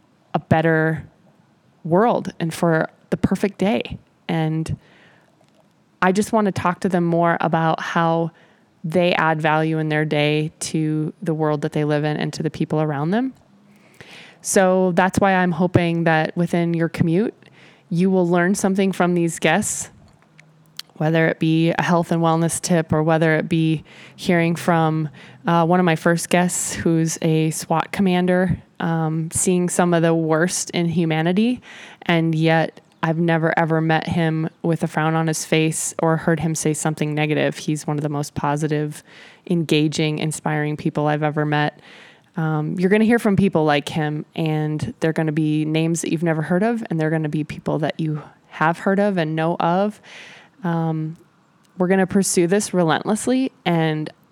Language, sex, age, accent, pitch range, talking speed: English, male, 20-39, American, 160-180 Hz, 170 wpm